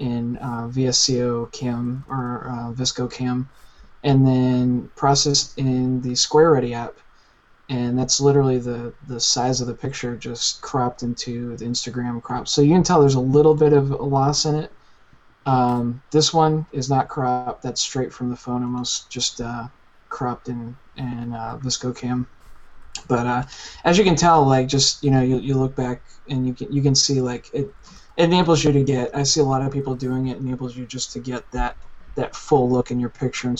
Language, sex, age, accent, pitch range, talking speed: English, male, 20-39, American, 125-135 Hz, 200 wpm